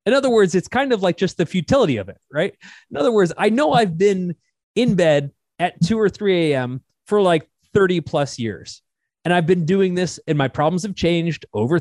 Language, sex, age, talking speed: English, male, 30-49, 220 wpm